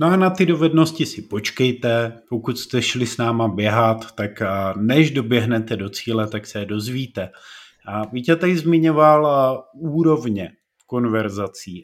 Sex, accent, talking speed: male, native, 140 wpm